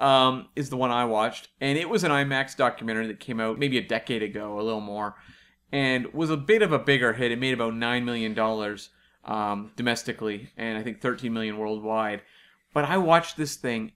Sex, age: male, 30-49